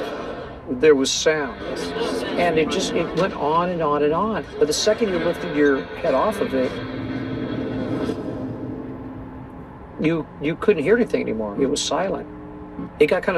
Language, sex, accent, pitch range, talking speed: English, male, American, 125-195 Hz, 155 wpm